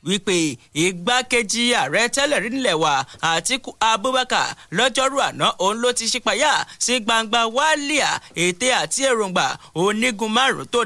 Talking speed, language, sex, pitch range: 150 wpm, English, male, 195-250 Hz